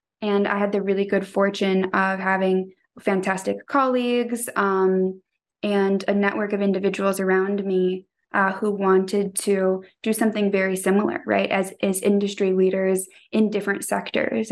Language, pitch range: English, 190-215 Hz